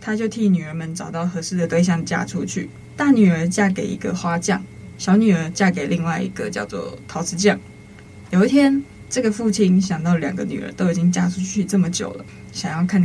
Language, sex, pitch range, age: Chinese, female, 170-200 Hz, 20-39